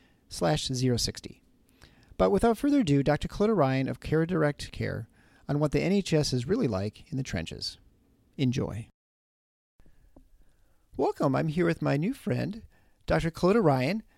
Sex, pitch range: male, 125-170 Hz